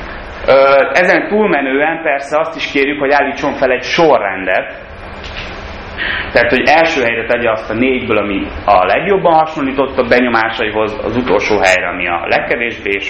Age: 30-49